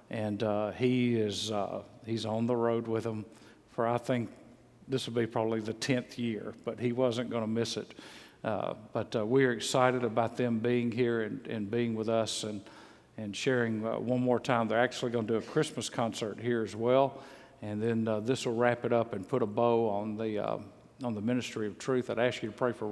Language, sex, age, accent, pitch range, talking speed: English, male, 50-69, American, 110-125 Hz, 225 wpm